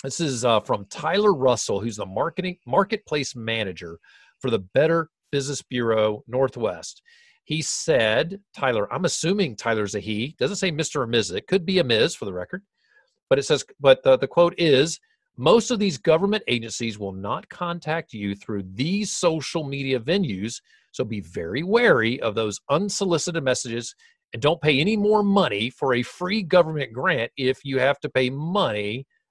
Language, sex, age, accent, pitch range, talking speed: English, male, 40-59, American, 115-185 Hz, 175 wpm